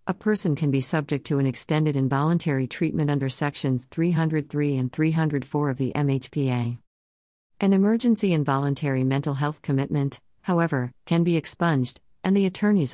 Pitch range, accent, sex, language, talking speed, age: 135-160 Hz, American, female, English, 145 wpm, 50-69